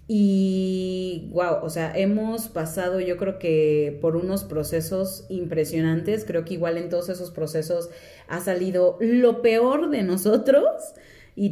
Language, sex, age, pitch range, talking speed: Spanish, female, 30-49, 165-210 Hz, 140 wpm